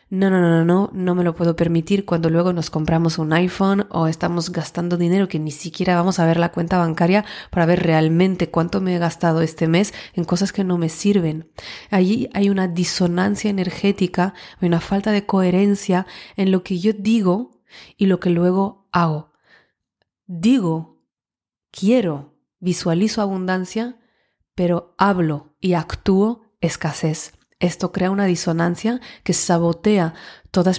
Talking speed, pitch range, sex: 155 wpm, 170-195 Hz, female